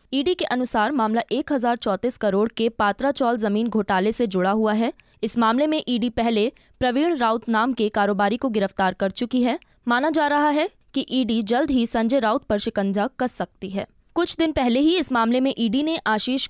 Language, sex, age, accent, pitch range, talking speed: Hindi, female, 20-39, native, 215-270 Hz, 195 wpm